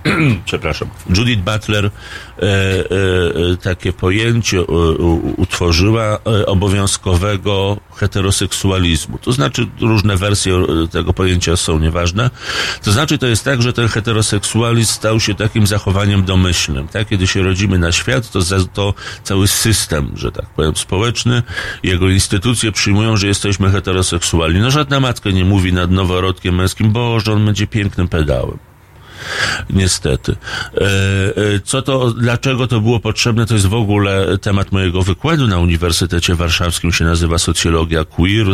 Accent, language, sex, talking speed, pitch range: native, Polish, male, 135 wpm, 90-110 Hz